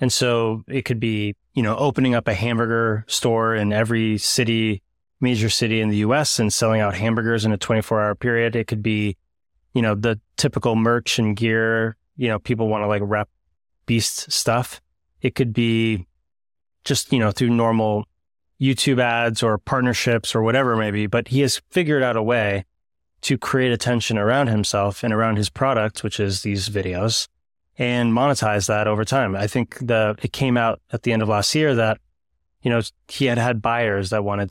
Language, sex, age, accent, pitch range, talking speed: English, male, 20-39, American, 105-120 Hz, 190 wpm